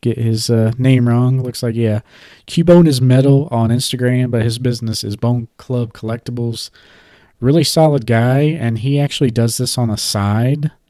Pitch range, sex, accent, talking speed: 110-125 Hz, male, American, 170 wpm